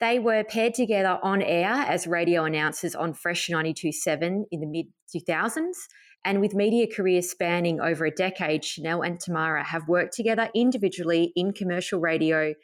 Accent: Australian